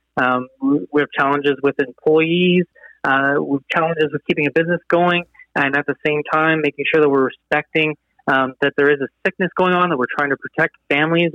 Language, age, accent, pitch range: English, 30-49, American, 150-185 Hz